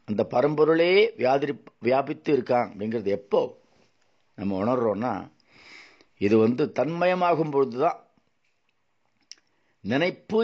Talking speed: 85 wpm